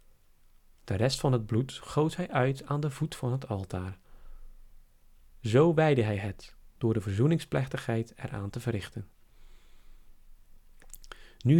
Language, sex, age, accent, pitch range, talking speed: Dutch, male, 40-59, Dutch, 105-145 Hz, 130 wpm